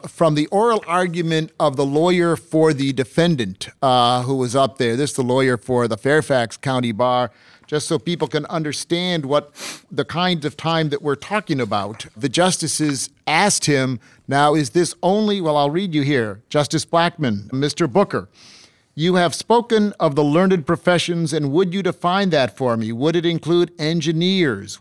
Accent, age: American, 50-69